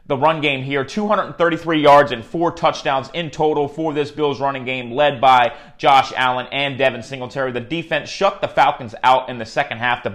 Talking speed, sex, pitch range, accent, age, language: 200 wpm, male, 125-155 Hz, American, 30-49, English